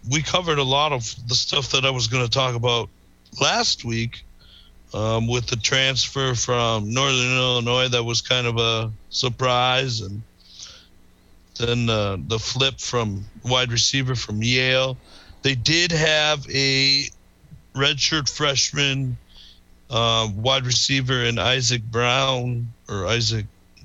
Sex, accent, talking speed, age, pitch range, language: male, American, 135 wpm, 50-69, 105-130 Hz, English